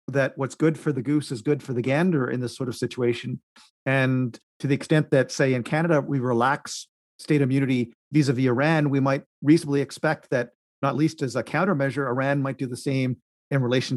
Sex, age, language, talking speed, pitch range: male, 40-59, English, 200 wpm, 125-150 Hz